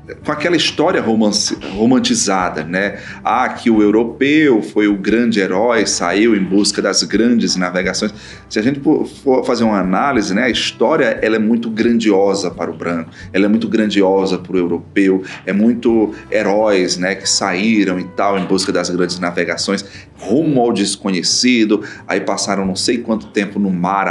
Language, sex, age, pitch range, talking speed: Portuguese, male, 30-49, 95-130 Hz, 165 wpm